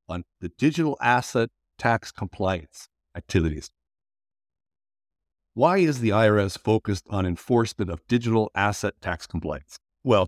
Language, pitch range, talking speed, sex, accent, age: English, 85-115 Hz, 115 wpm, male, American, 60-79